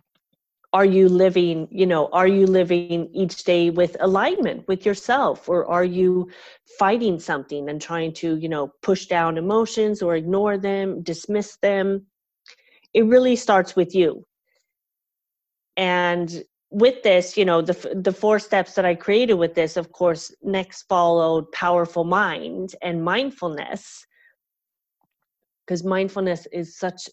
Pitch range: 165-195 Hz